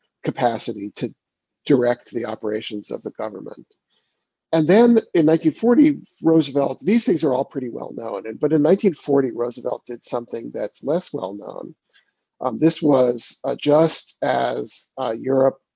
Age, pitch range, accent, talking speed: 50-69, 120-170 Hz, American, 145 wpm